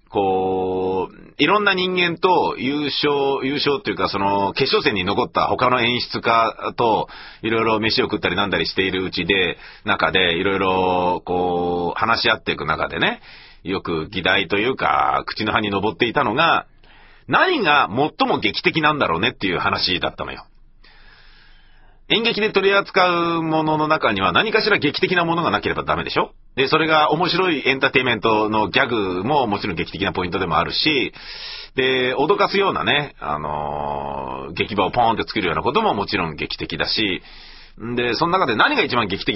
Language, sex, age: Japanese, male, 40-59